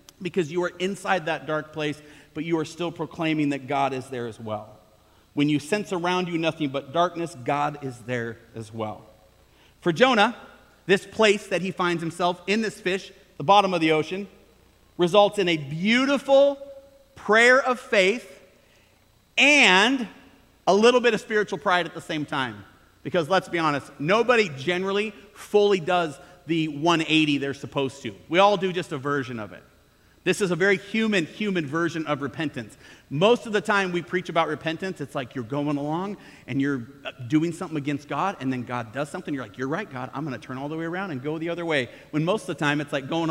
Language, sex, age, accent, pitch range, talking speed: English, male, 40-59, American, 145-200 Hz, 200 wpm